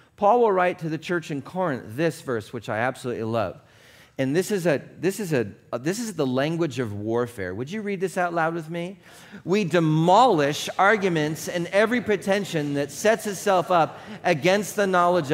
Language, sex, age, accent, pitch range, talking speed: English, male, 40-59, American, 170-235 Hz, 170 wpm